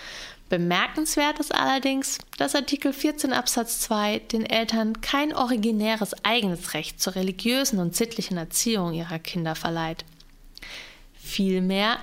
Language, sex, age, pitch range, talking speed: German, female, 20-39, 175-230 Hz, 115 wpm